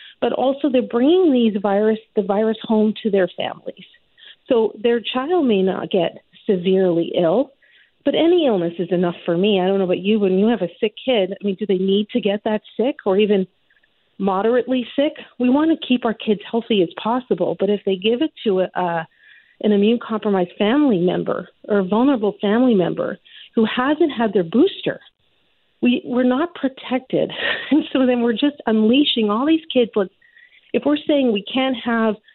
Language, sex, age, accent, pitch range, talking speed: English, female, 40-59, American, 195-255 Hz, 190 wpm